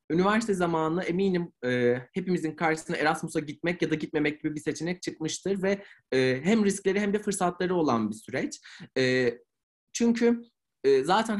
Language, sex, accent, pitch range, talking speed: Turkish, male, native, 130-170 Hz, 155 wpm